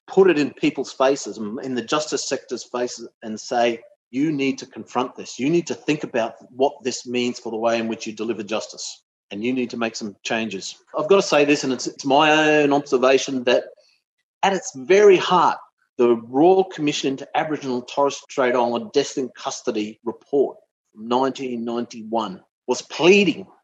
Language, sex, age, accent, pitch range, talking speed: English, male, 40-59, Australian, 120-155 Hz, 185 wpm